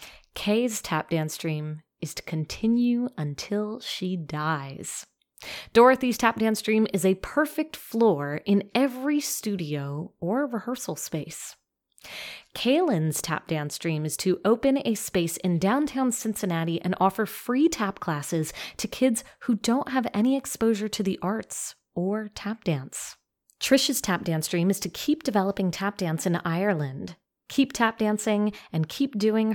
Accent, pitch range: American, 170-230 Hz